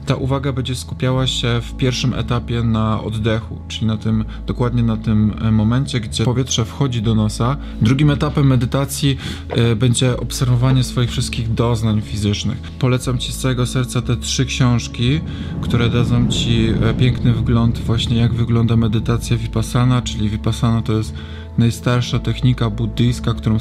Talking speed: 140 wpm